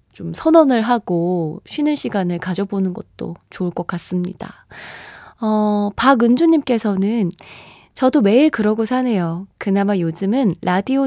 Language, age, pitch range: Korean, 20-39, 185-260 Hz